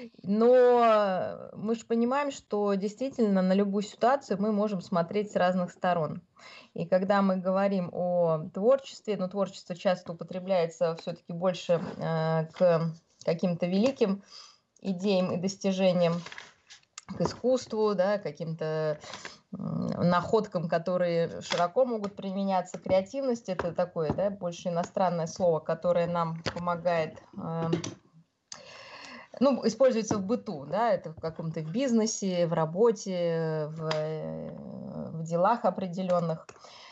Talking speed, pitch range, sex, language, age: 120 wpm, 170-210 Hz, female, Russian, 20-39